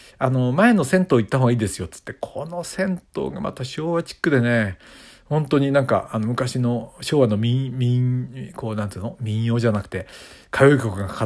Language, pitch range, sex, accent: Japanese, 105-145 Hz, male, native